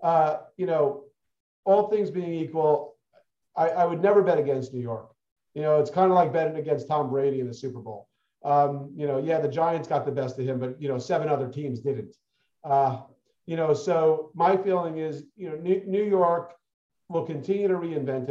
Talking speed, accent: 205 wpm, American